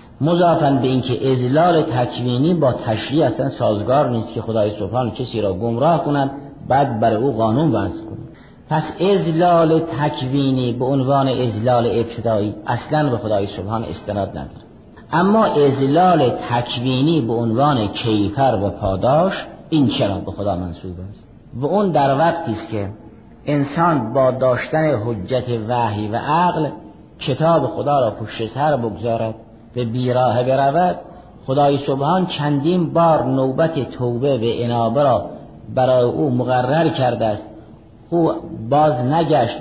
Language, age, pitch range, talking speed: Persian, 50-69, 115-150 Hz, 135 wpm